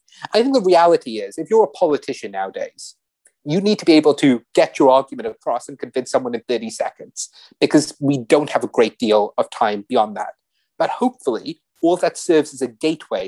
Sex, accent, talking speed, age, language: male, British, 205 wpm, 30-49, English